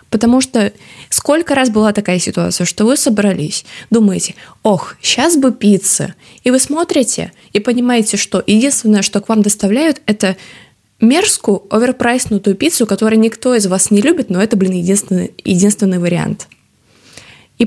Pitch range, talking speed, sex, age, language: 190-240 Hz, 145 wpm, female, 20-39, Russian